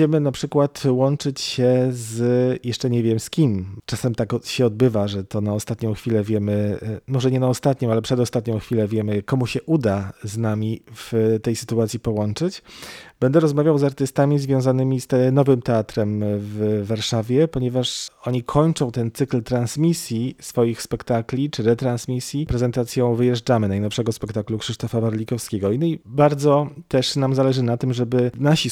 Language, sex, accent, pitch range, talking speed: Polish, male, native, 115-140 Hz, 155 wpm